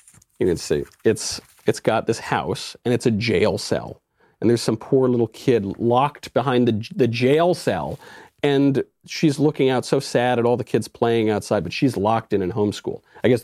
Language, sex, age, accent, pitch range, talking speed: English, male, 40-59, American, 110-155 Hz, 200 wpm